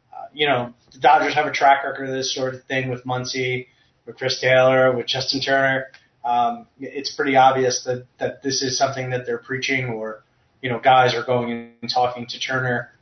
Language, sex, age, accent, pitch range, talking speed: English, male, 30-49, American, 125-135 Hz, 200 wpm